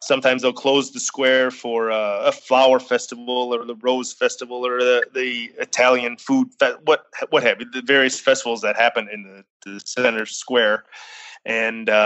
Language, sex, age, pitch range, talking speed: English, male, 30-49, 115-135 Hz, 175 wpm